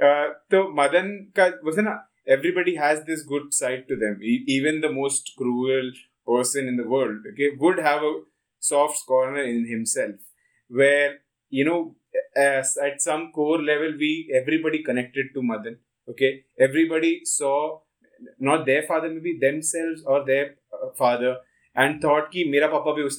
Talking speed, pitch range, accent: 145 wpm, 130-160 Hz, Indian